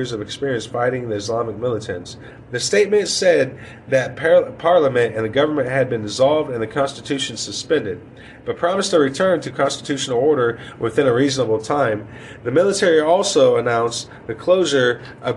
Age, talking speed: 30-49, 155 wpm